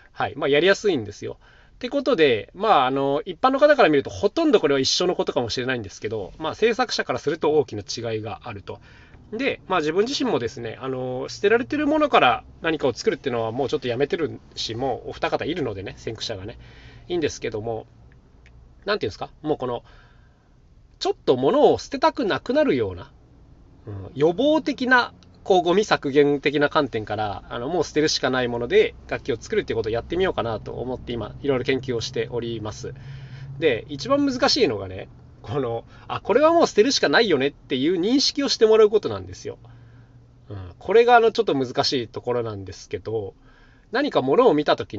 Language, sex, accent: Japanese, male, native